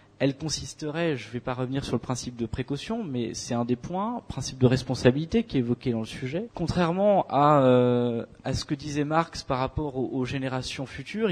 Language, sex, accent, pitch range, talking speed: French, male, French, 125-170 Hz, 210 wpm